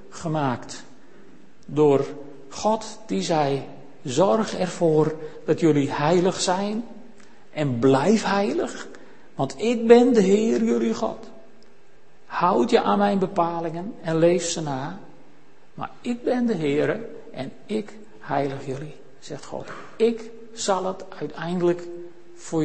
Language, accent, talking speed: Dutch, Dutch, 120 wpm